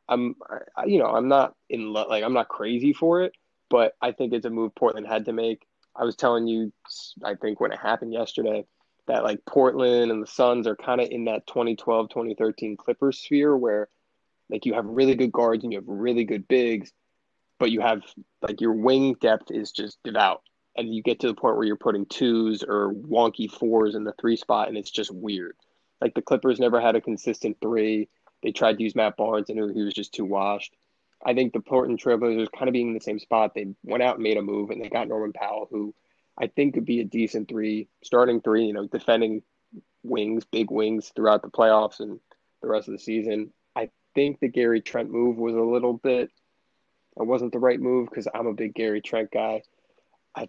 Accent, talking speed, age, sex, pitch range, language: American, 220 wpm, 20-39, male, 110-120 Hz, English